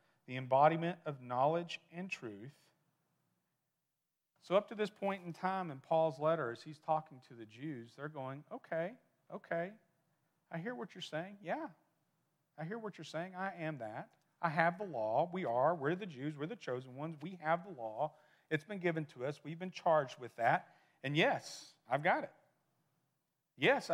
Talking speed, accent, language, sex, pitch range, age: 185 wpm, American, English, male, 145-185 Hz, 40-59